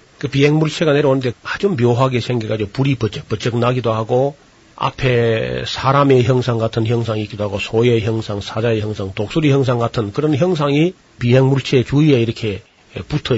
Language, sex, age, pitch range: Korean, male, 40-59, 110-140 Hz